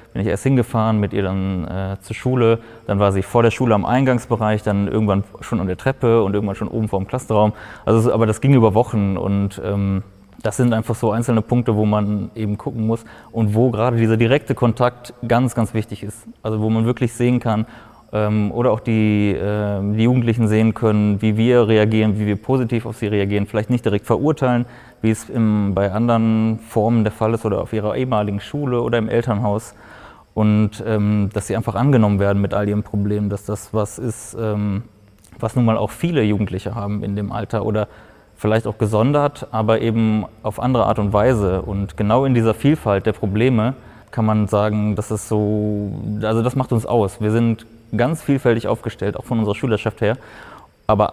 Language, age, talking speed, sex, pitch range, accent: German, 20-39, 200 wpm, male, 105-120 Hz, German